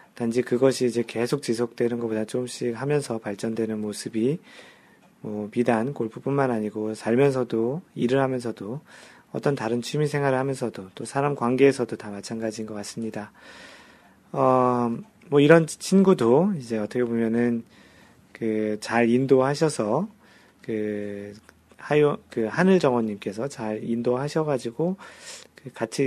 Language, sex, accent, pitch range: Korean, male, native, 110-140 Hz